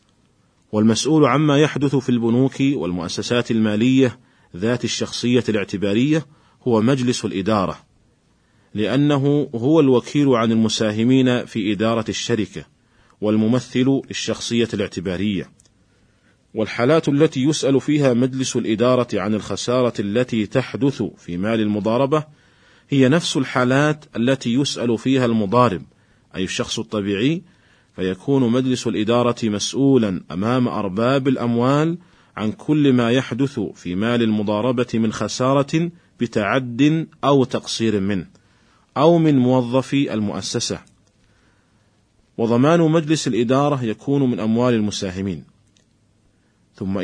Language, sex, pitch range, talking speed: Arabic, male, 105-130 Hz, 100 wpm